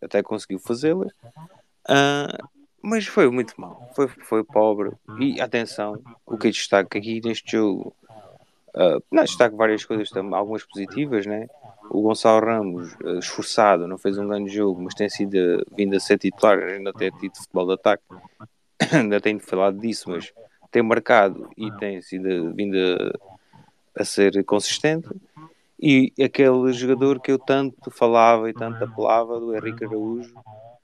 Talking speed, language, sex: 150 wpm, Portuguese, male